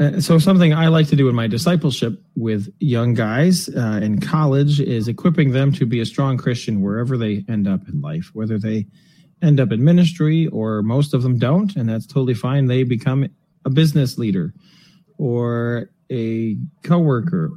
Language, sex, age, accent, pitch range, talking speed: English, male, 30-49, American, 120-165 Hz, 180 wpm